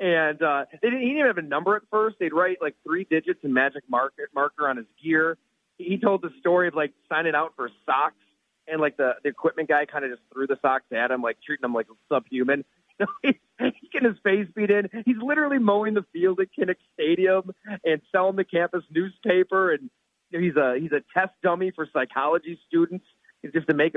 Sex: male